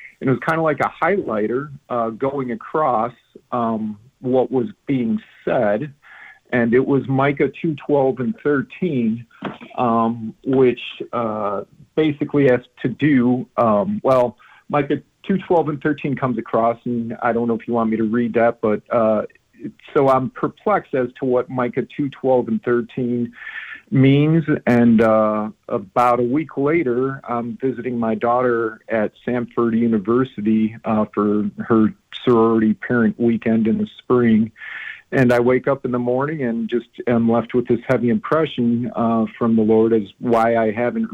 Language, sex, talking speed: English, male, 160 wpm